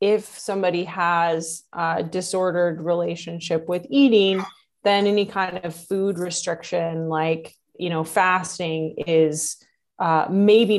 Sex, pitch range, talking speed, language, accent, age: female, 160-185 Hz, 115 wpm, English, American, 20-39